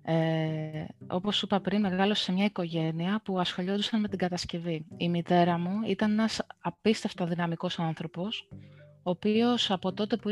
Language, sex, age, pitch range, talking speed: Greek, female, 20-39, 175-210 Hz, 155 wpm